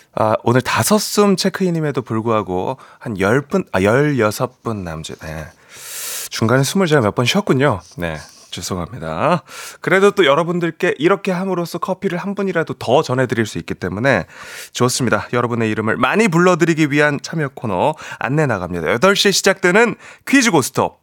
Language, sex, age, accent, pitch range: Korean, male, 30-49, native, 120-200 Hz